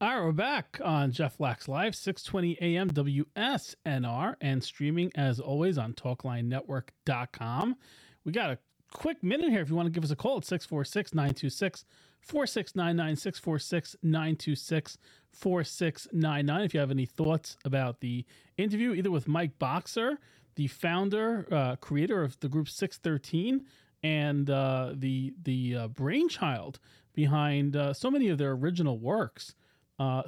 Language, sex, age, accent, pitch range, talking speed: English, male, 40-59, American, 135-180 Hz, 135 wpm